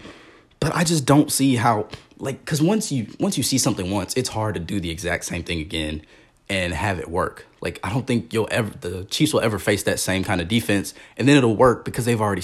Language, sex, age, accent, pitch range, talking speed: English, male, 20-39, American, 90-115 Hz, 245 wpm